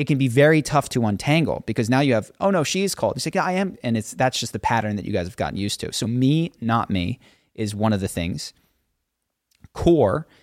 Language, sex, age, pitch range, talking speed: English, male, 30-49, 100-120 Hz, 255 wpm